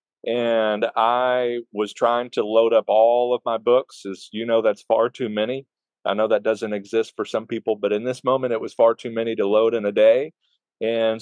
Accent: American